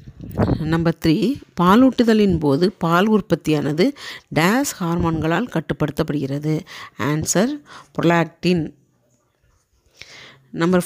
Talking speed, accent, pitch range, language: 65 wpm, native, 155-200 Hz, Tamil